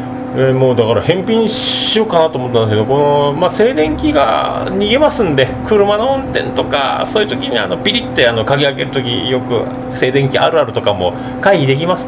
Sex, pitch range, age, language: male, 125-155 Hz, 40-59, Japanese